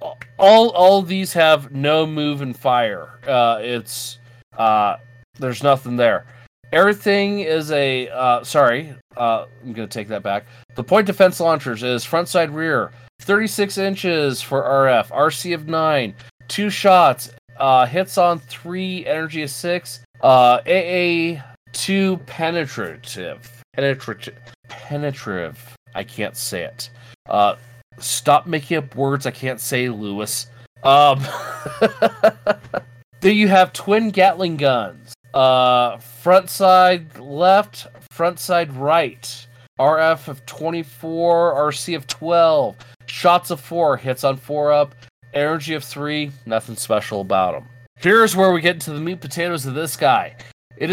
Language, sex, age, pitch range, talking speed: English, male, 30-49, 120-175 Hz, 135 wpm